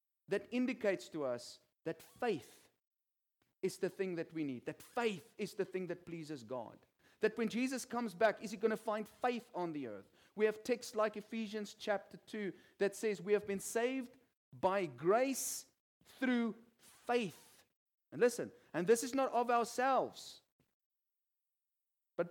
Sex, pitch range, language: male, 195-255 Hz, English